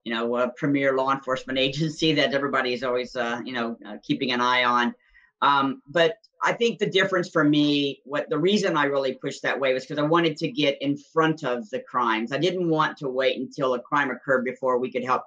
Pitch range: 125-150 Hz